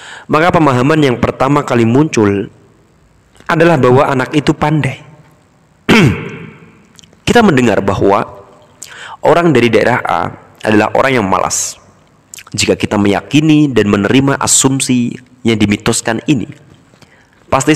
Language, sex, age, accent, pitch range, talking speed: Indonesian, male, 30-49, native, 105-135 Hz, 110 wpm